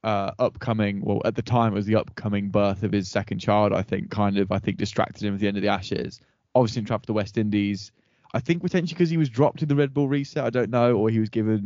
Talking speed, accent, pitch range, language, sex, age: 280 wpm, British, 105-125 Hz, English, male, 10-29